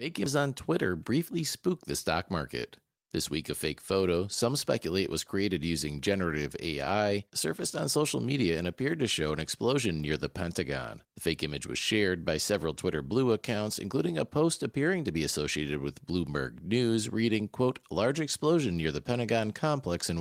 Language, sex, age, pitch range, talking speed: English, male, 40-59, 75-115 Hz, 185 wpm